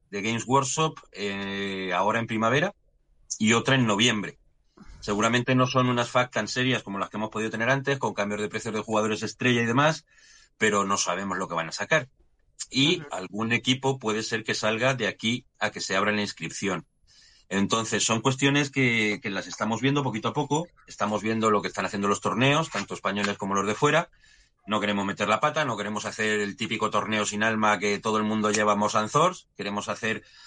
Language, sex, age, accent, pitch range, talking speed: Spanish, male, 30-49, Spanish, 100-125 Hz, 210 wpm